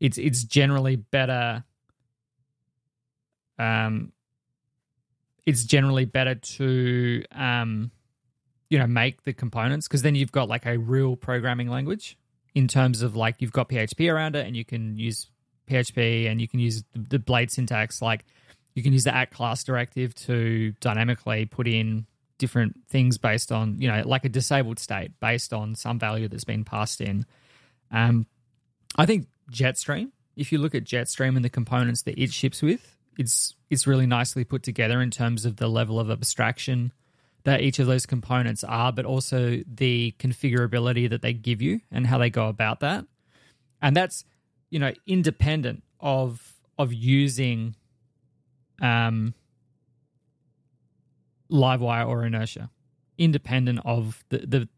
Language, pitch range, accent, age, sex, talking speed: English, 115-135 Hz, Australian, 20-39, male, 155 wpm